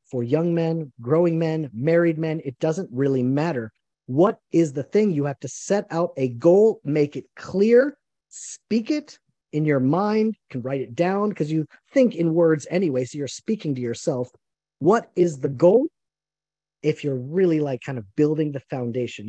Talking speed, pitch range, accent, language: 180 wpm, 145-215 Hz, American, English